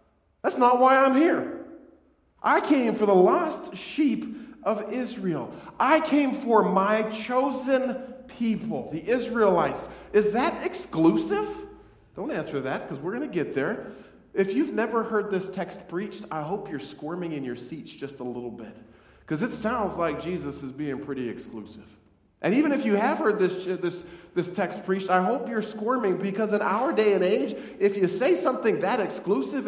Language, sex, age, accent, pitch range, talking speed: English, male, 40-59, American, 160-245 Hz, 175 wpm